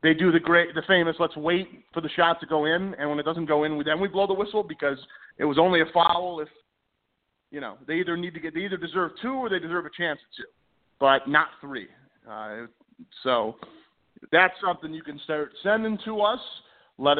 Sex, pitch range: male, 155-210 Hz